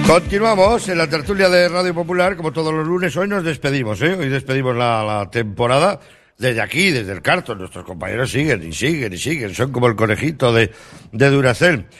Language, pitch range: Spanish, 100-145 Hz